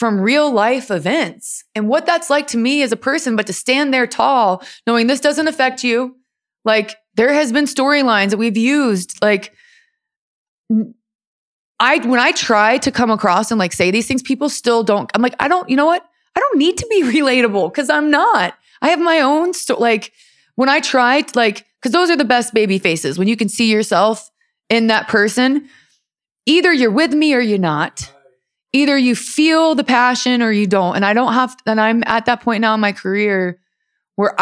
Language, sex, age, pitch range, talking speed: English, female, 20-39, 205-270 Hz, 205 wpm